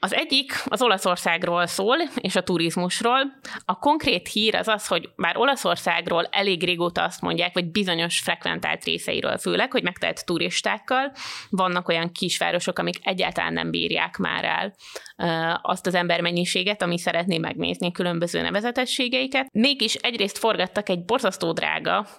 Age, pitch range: 20-39, 175-220 Hz